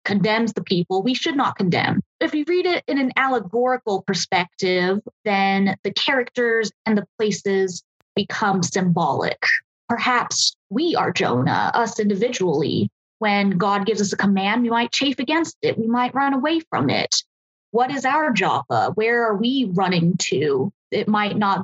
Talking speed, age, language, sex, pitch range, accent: 160 wpm, 20-39, English, female, 200-255 Hz, American